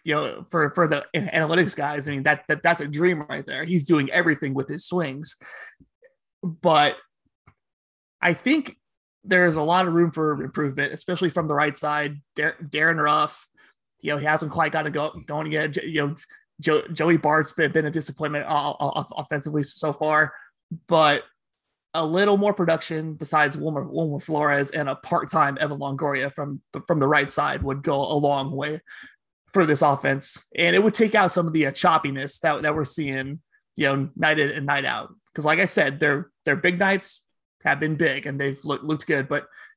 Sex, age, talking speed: male, 30-49, 195 wpm